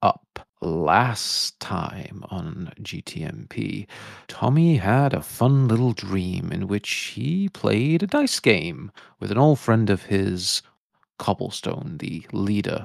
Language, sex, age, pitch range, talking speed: English, male, 40-59, 95-135 Hz, 125 wpm